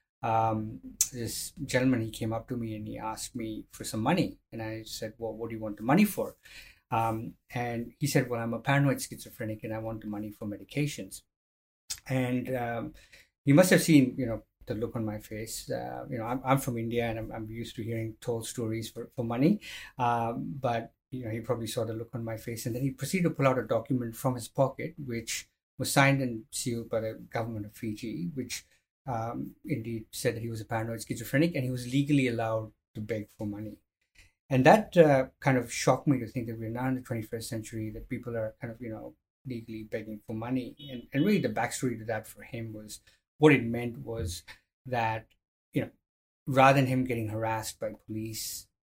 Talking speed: 220 wpm